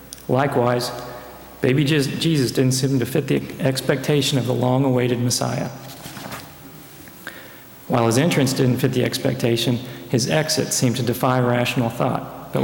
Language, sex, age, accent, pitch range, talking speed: English, male, 40-59, American, 125-140 Hz, 135 wpm